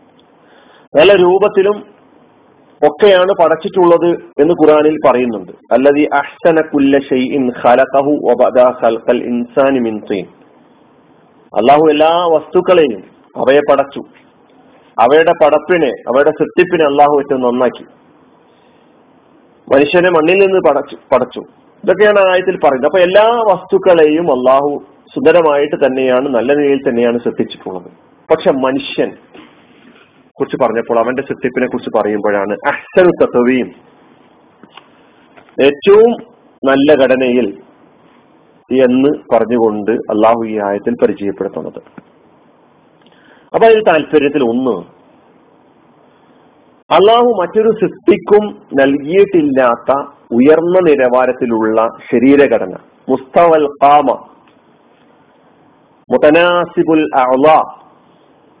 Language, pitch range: Malayalam, 130-180 Hz